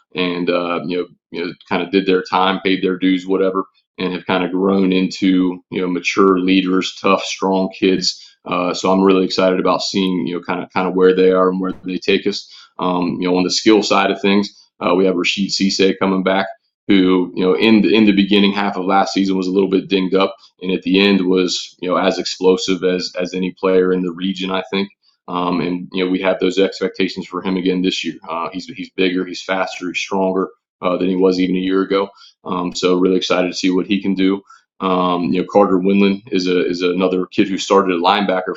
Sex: male